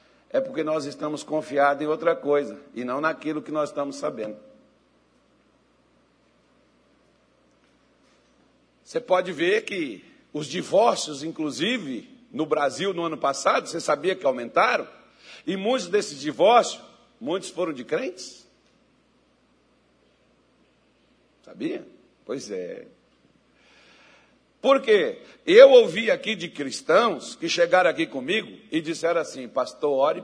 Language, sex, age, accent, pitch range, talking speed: Portuguese, male, 60-79, Brazilian, 155-250 Hz, 115 wpm